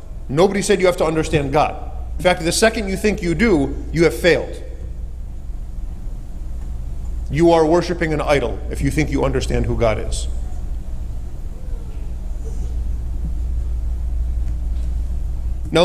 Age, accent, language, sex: 40-59, American, English, male